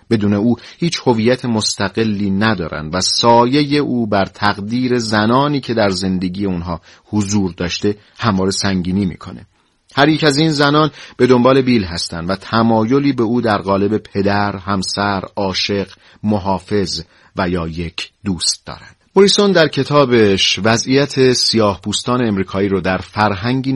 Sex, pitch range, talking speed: male, 95-120 Hz, 135 wpm